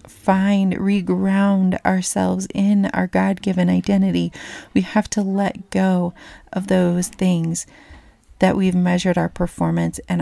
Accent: American